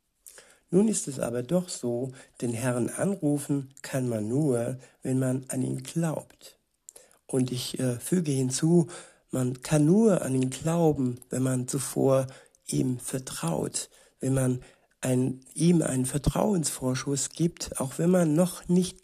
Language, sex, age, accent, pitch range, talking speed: German, male, 60-79, German, 130-150 Hz, 140 wpm